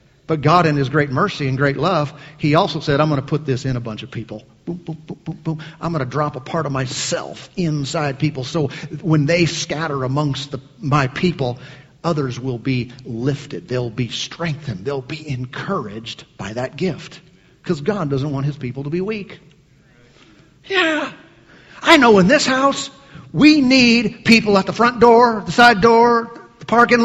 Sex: male